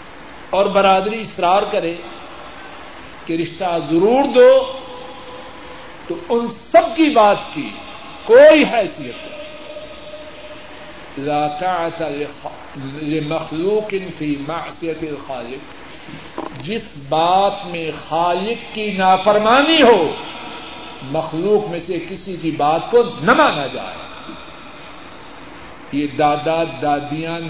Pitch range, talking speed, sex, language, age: 160-215 Hz, 85 wpm, male, Urdu, 50-69